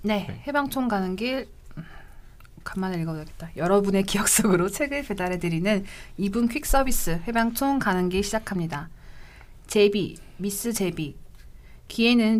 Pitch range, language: 175-215 Hz, Korean